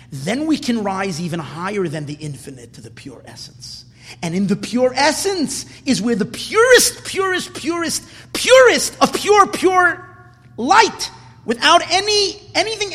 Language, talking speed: English, 150 wpm